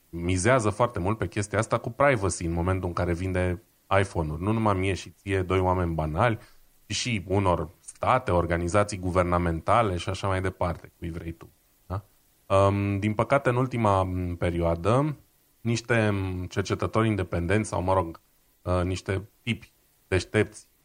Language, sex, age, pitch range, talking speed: Romanian, male, 30-49, 90-115 Hz, 145 wpm